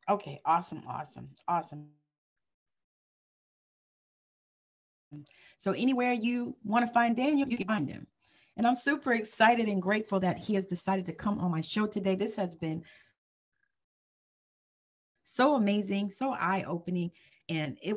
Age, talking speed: 40-59, 135 wpm